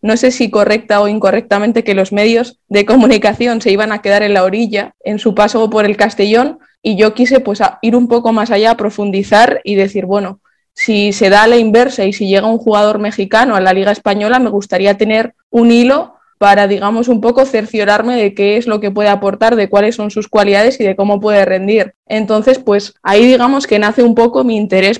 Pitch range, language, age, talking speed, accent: 200-225 Hz, Spanish, 20-39, 220 wpm, Spanish